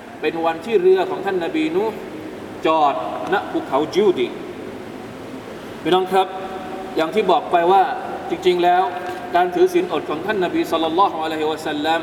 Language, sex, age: Thai, male, 20-39